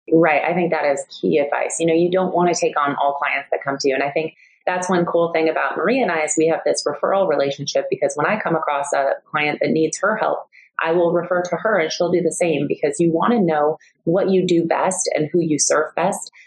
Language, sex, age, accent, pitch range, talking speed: English, female, 30-49, American, 150-190 Hz, 265 wpm